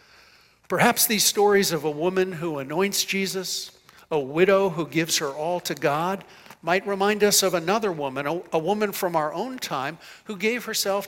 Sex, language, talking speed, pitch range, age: male, English, 175 wpm, 135-185 Hz, 60-79